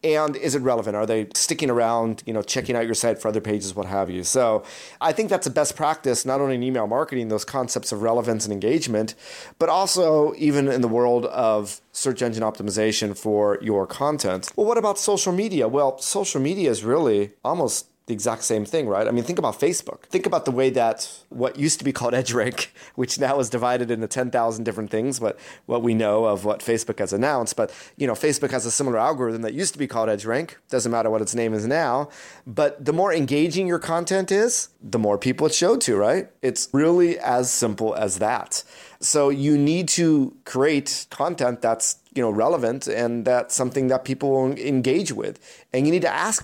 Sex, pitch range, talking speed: male, 110-145 Hz, 210 wpm